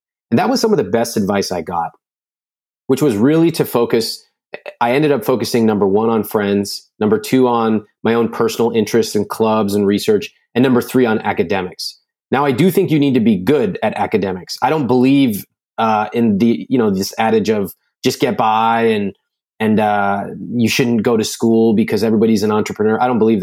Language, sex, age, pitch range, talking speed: English, male, 30-49, 110-150 Hz, 200 wpm